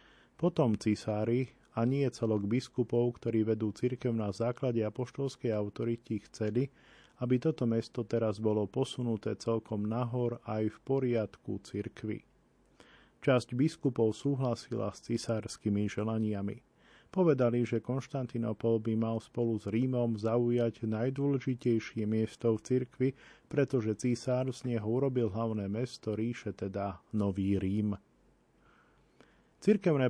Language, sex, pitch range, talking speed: Slovak, male, 110-125 Hz, 115 wpm